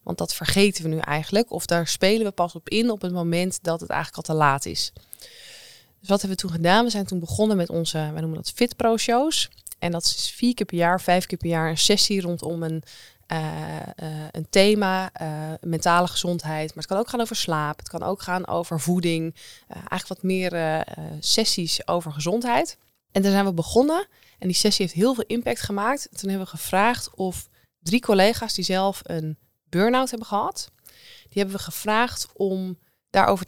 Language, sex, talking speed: Dutch, female, 210 wpm